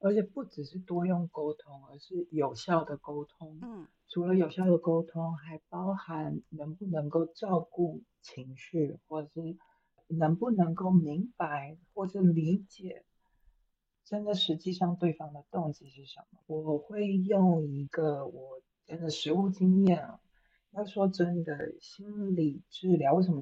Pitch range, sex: 155-195 Hz, female